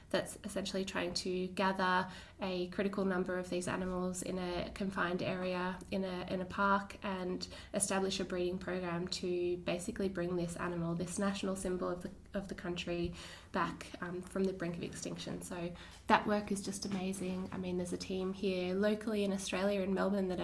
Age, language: 20-39, English